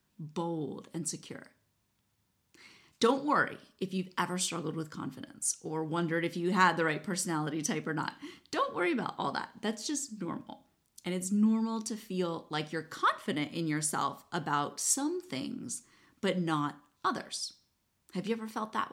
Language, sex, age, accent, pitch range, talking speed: English, female, 30-49, American, 160-210 Hz, 160 wpm